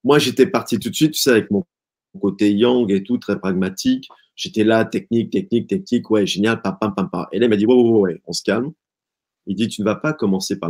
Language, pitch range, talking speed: French, 95-125 Hz, 265 wpm